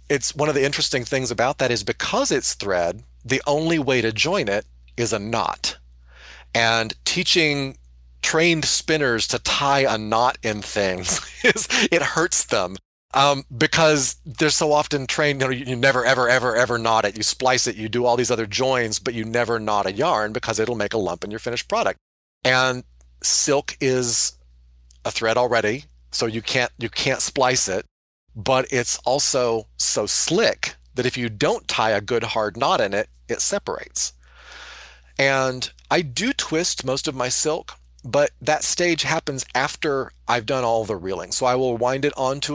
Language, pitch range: English, 105-135 Hz